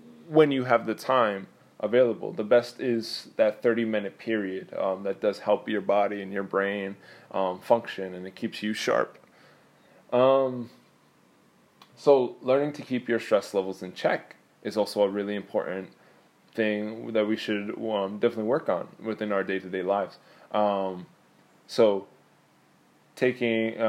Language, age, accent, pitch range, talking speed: English, 20-39, American, 100-120 Hz, 145 wpm